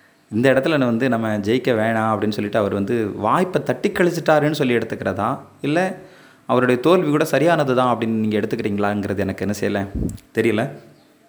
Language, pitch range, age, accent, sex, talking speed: Tamil, 105-130 Hz, 20-39, native, male, 140 wpm